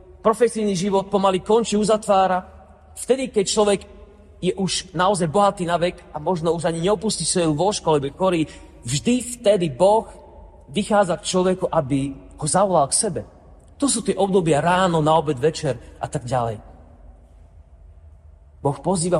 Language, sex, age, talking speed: Slovak, male, 40-59, 140 wpm